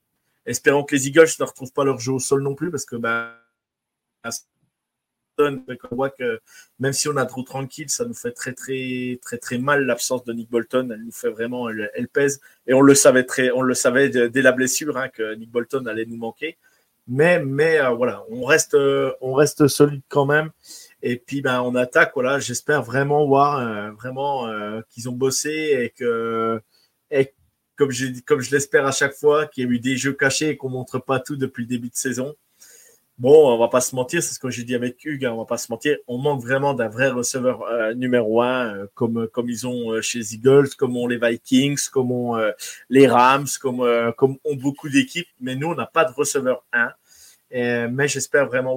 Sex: male